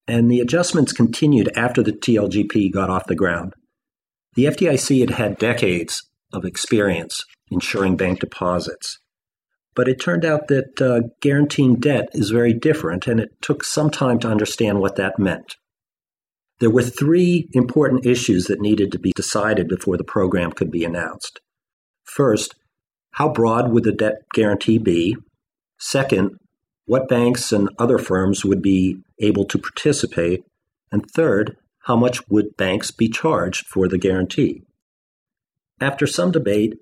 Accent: American